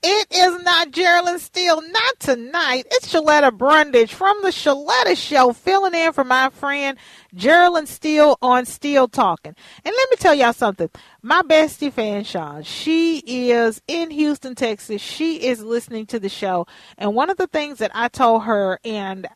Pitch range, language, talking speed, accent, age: 190-285 Hz, English, 170 wpm, American, 40-59